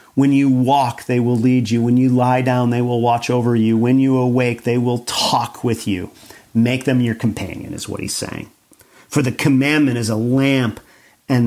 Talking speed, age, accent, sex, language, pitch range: 205 wpm, 40-59, American, male, English, 115-145 Hz